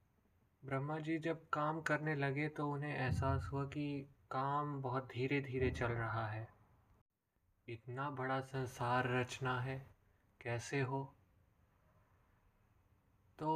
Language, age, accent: Hindi, 20-39, native